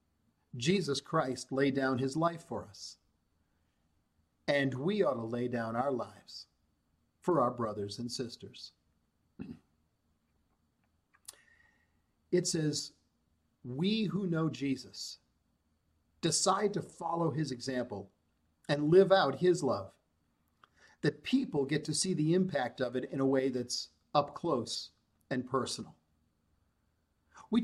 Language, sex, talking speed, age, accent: English, male, 120 wpm, 50-69, American